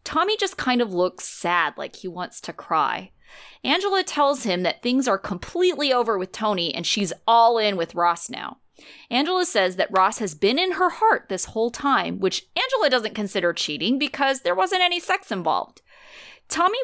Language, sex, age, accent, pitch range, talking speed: English, female, 30-49, American, 195-300 Hz, 185 wpm